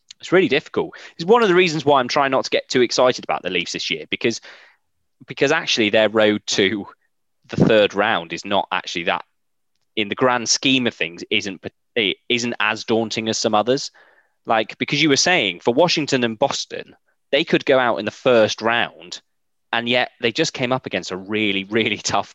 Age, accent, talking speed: 20-39, British, 205 wpm